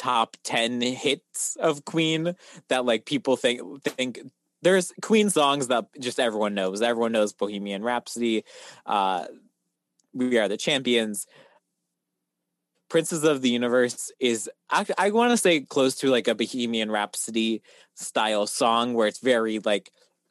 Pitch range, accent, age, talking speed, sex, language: 105-135 Hz, American, 20-39, 140 wpm, male, English